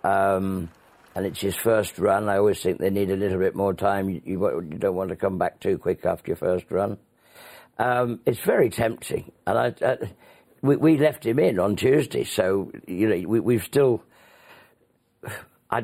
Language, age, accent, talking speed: English, 60-79, British, 175 wpm